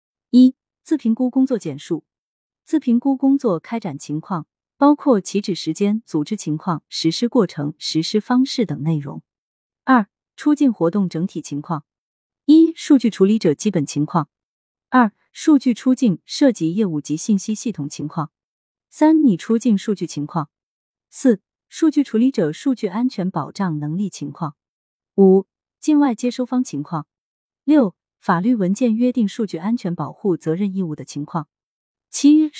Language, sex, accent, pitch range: Chinese, female, native, 160-245 Hz